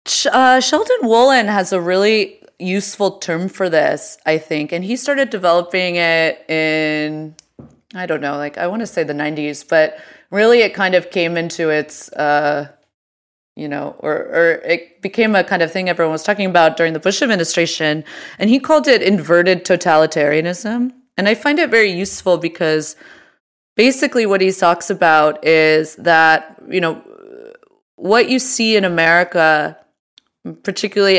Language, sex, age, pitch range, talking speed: English, female, 20-39, 160-210 Hz, 160 wpm